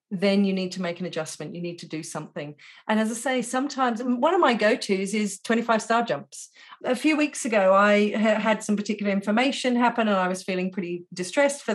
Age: 40-59